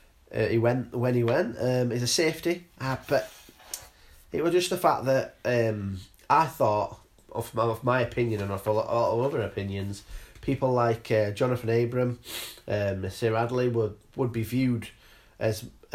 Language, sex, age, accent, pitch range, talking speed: English, male, 30-49, British, 110-130 Hz, 160 wpm